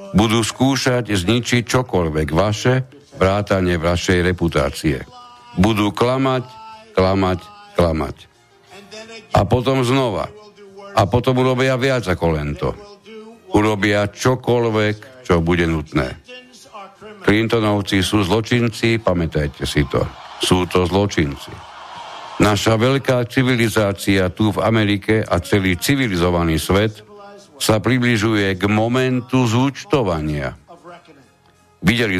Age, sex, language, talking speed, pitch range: 60-79, male, Slovak, 95 wpm, 90-125 Hz